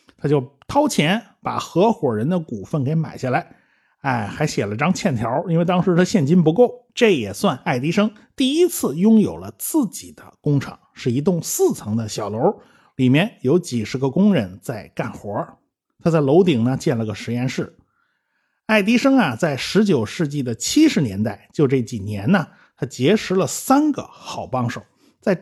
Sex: male